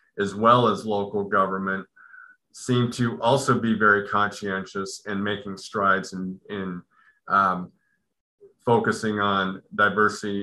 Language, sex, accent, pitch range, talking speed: English, male, American, 100-120 Hz, 115 wpm